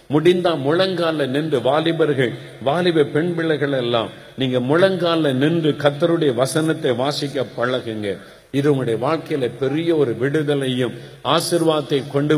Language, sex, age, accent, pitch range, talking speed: Tamil, male, 50-69, native, 115-150 Hz, 105 wpm